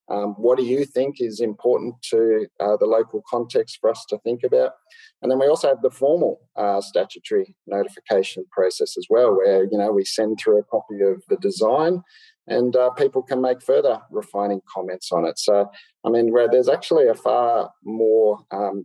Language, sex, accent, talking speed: English, male, Australian, 195 wpm